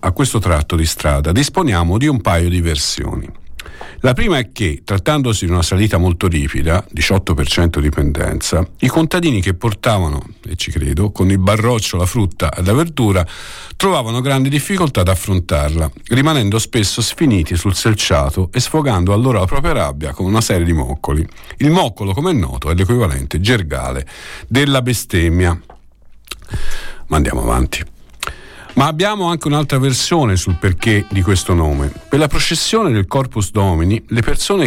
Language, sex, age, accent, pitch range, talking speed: Italian, male, 50-69, native, 90-125 Hz, 160 wpm